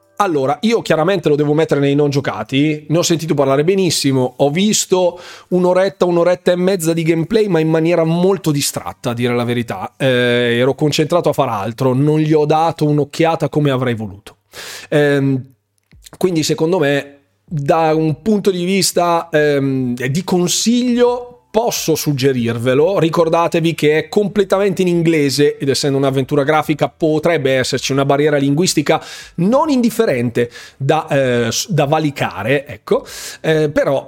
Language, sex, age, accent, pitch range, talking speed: Italian, male, 30-49, native, 135-180 Hz, 145 wpm